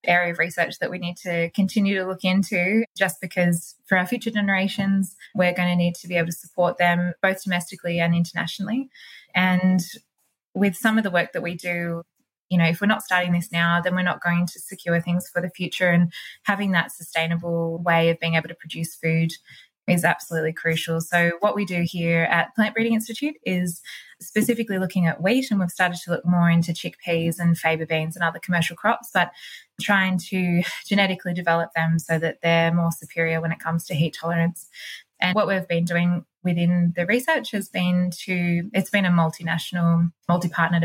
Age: 20-39